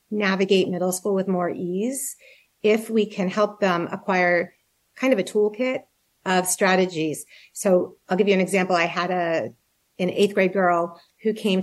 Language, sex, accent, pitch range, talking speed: English, female, American, 180-215 Hz, 170 wpm